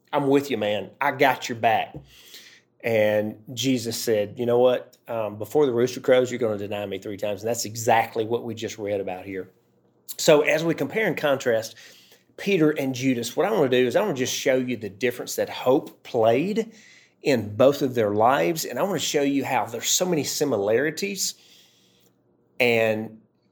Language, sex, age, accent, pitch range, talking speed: English, male, 30-49, American, 100-135 Hz, 200 wpm